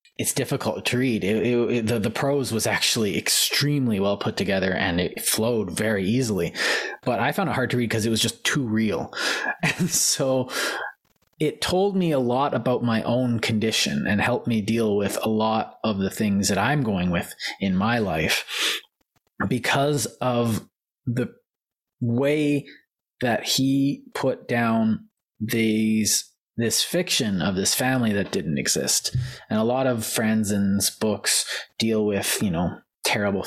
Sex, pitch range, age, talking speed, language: male, 110-130 Hz, 20-39, 155 wpm, English